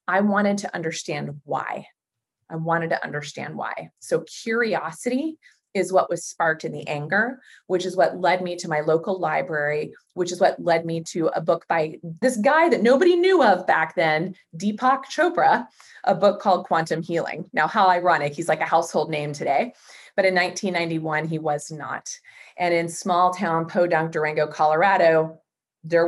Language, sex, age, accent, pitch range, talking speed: English, female, 30-49, American, 155-185 Hz, 175 wpm